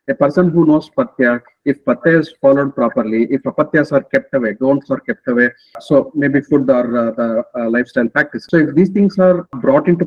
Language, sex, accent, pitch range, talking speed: English, male, Indian, 135-175 Hz, 210 wpm